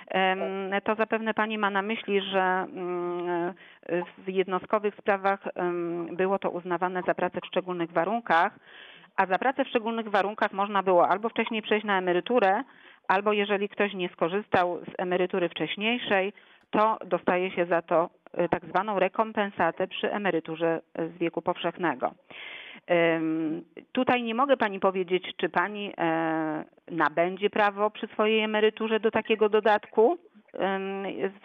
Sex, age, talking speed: female, 40-59, 130 wpm